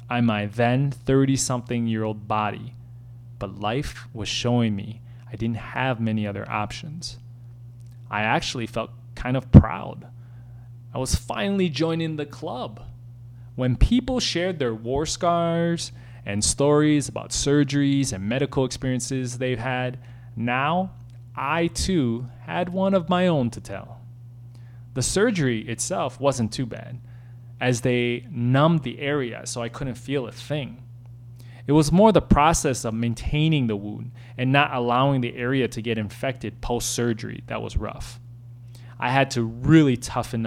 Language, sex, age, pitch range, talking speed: English, male, 20-39, 120-140 Hz, 145 wpm